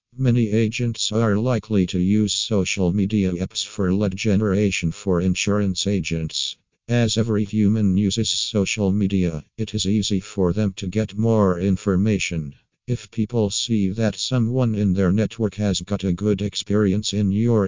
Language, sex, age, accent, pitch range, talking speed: English, male, 50-69, American, 95-110 Hz, 155 wpm